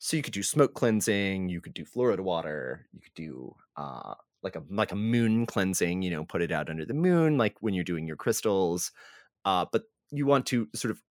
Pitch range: 95-135 Hz